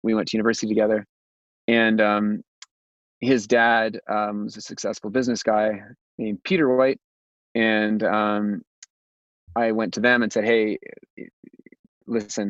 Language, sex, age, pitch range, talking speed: English, male, 30-49, 100-115 Hz, 135 wpm